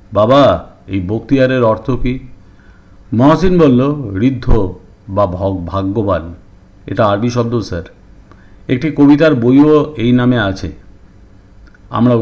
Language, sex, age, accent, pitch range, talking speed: English, male, 50-69, Indian, 95-135 Hz, 110 wpm